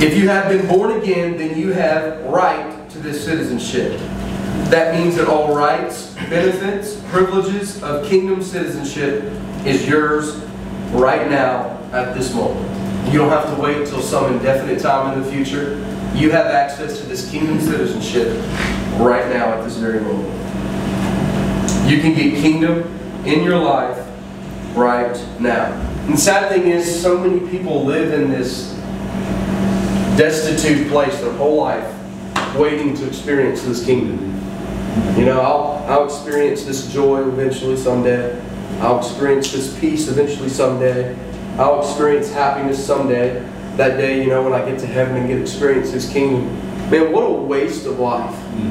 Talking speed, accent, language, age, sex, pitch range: 155 wpm, American, English, 30-49, male, 130-170 Hz